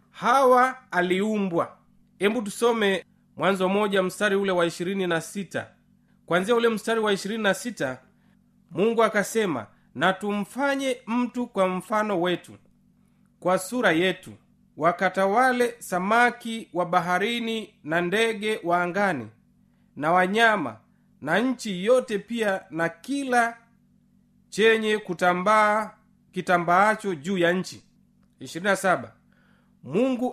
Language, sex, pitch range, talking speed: Swahili, male, 190-225 Hz, 95 wpm